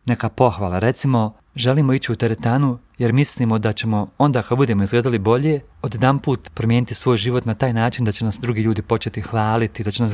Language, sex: Croatian, male